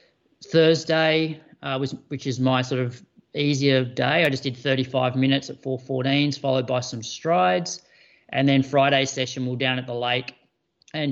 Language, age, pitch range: English, 30-49, 125-140 Hz